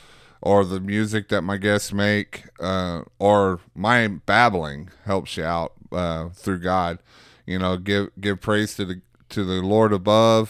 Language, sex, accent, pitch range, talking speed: English, male, American, 90-110 Hz, 160 wpm